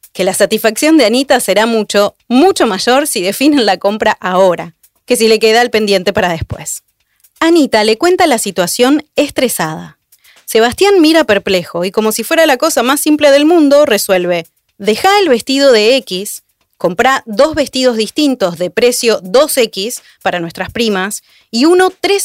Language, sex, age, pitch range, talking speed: Spanish, female, 30-49, 195-300 Hz, 160 wpm